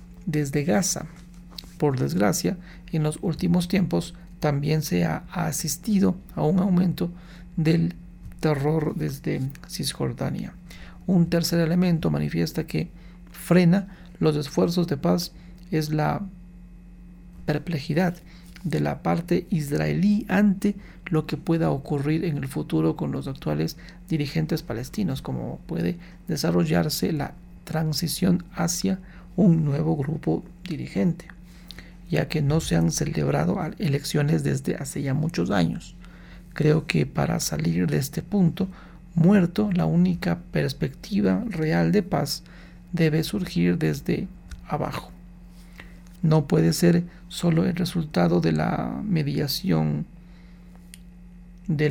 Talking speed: 115 wpm